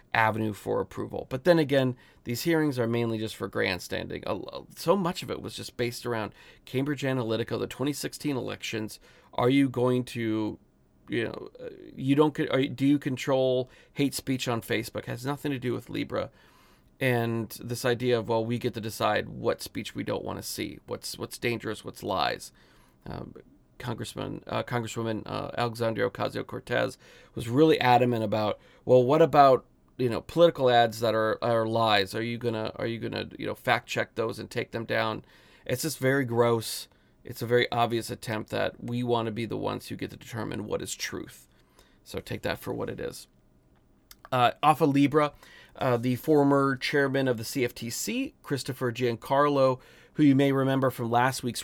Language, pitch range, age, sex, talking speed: English, 115-135 Hz, 30-49, male, 180 wpm